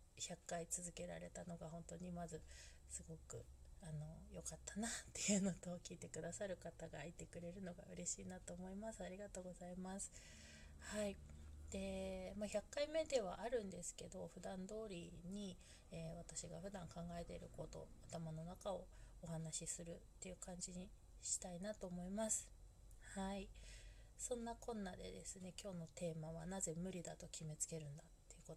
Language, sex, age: Japanese, female, 20-39